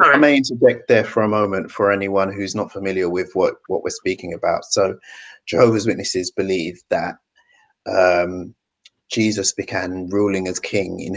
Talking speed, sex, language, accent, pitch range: 160 wpm, male, English, British, 90-110 Hz